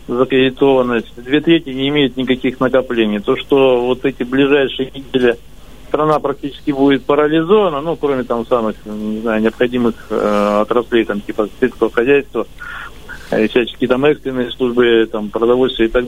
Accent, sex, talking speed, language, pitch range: native, male, 140 wpm, Russian, 120-150 Hz